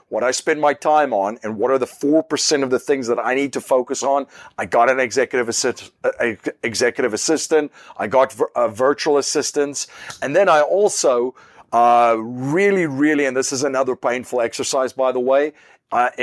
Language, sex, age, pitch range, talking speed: English, male, 40-59, 125-165 Hz, 190 wpm